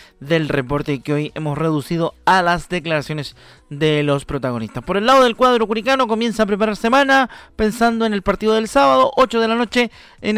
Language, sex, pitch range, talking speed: Spanish, male, 165-230 Hz, 190 wpm